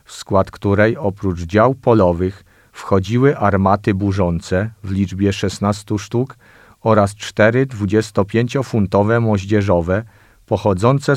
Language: Polish